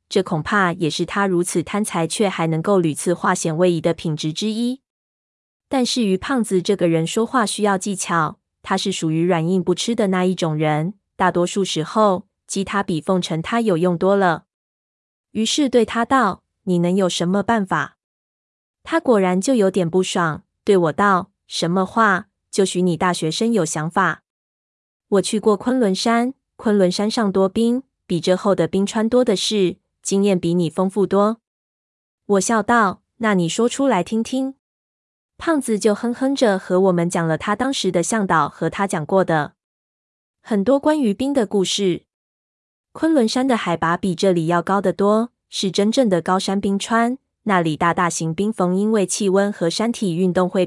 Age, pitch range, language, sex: 20-39, 175-220 Hz, Chinese, female